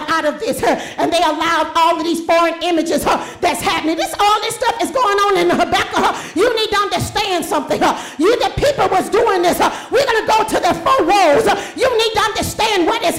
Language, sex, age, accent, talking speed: English, female, 40-59, American, 215 wpm